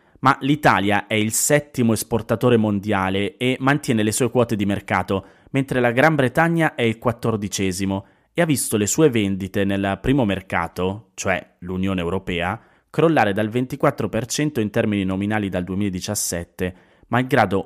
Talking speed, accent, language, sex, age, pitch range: 145 wpm, native, Italian, male, 20-39, 100-130 Hz